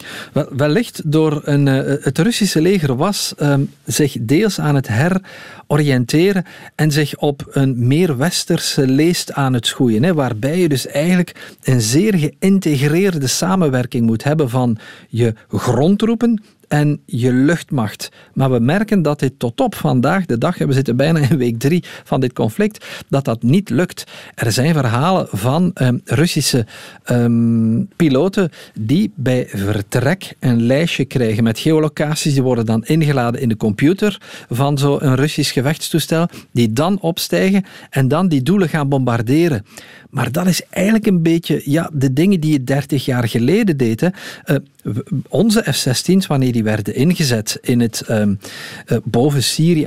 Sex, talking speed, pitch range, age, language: male, 150 wpm, 125-170 Hz, 50-69, Dutch